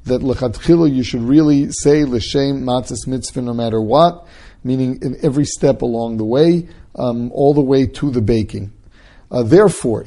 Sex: male